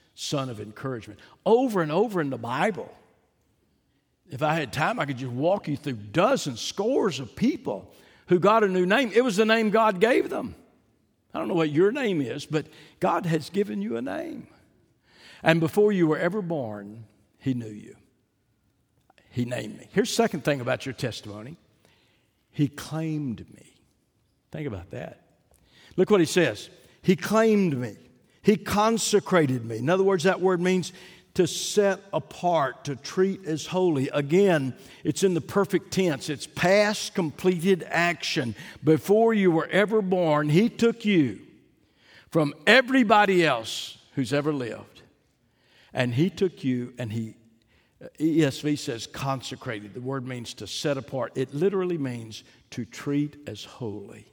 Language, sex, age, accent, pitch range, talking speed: English, male, 60-79, American, 130-190 Hz, 160 wpm